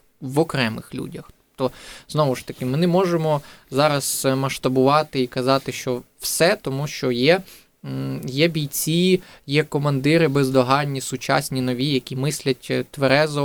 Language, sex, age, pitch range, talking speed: Ukrainian, male, 20-39, 130-155 Hz, 130 wpm